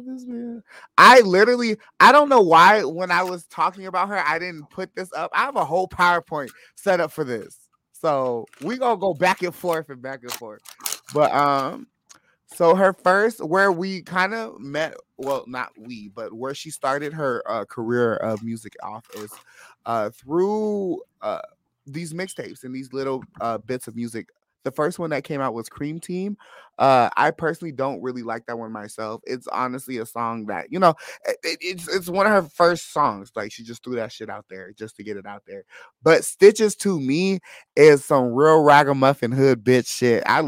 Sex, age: male, 20-39